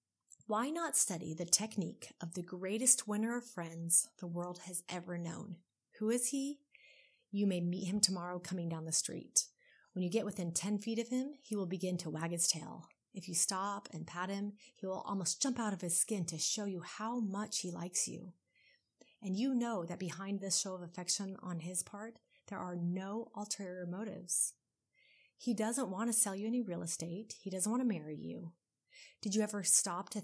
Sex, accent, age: female, American, 30-49